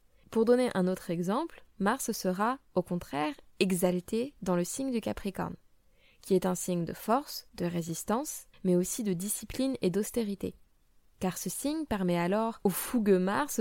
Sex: female